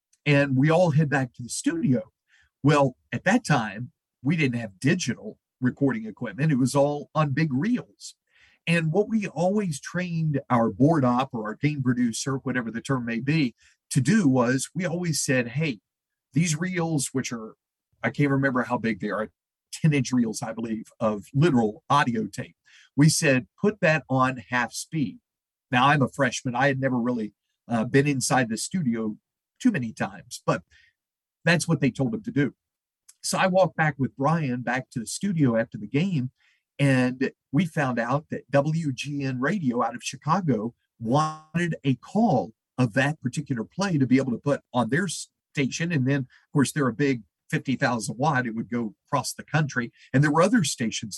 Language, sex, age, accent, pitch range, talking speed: English, male, 50-69, American, 125-160 Hz, 185 wpm